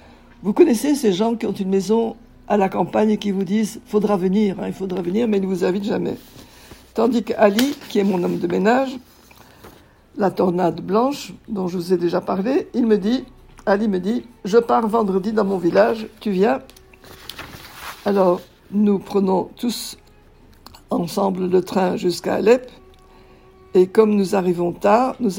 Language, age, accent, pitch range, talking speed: French, 60-79, French, 190-220 Hz, 175 wpm